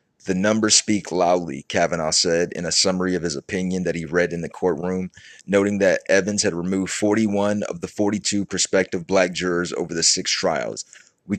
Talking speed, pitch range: 185 wpm, 90-100 Hz